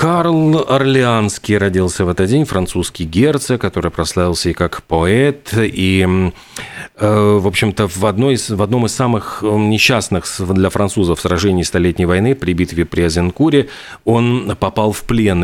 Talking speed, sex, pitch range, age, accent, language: 135 wpm, male, 95-125 Hz, 40-59, native, Russian